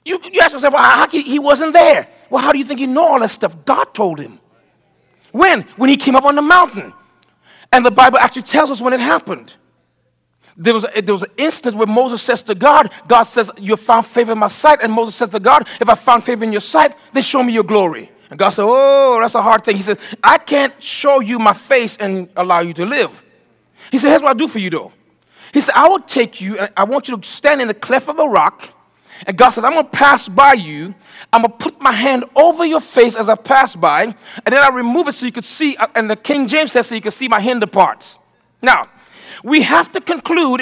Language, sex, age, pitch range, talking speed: English, male, 40-59, 225-285 Hz, 260 wpm